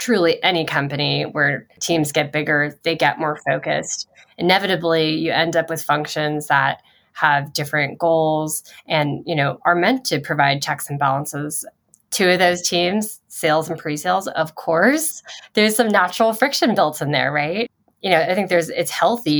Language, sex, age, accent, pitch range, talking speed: English, female, 10-29, American, 150-180 Hz, 170 wpm